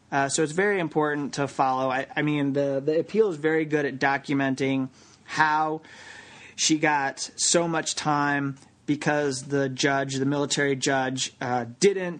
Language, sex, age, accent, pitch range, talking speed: English, male, 30-49, American, 135-155 Hz, 155 wpm